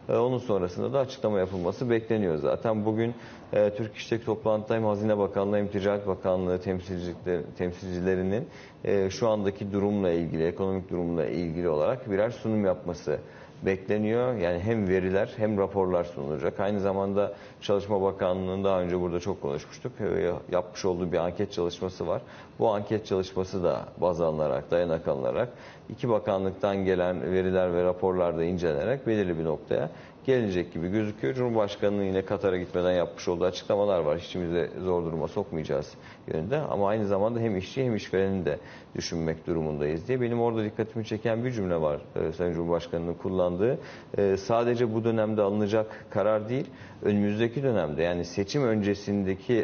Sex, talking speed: male, 145 wpm